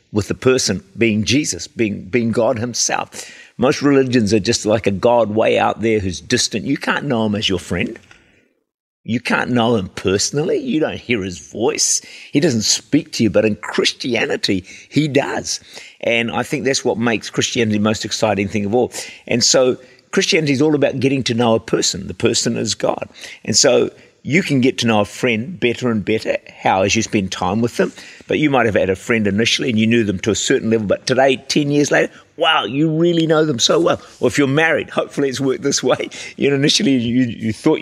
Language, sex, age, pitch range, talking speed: English, male, 50-69, 110-135 Hz, 215 wpm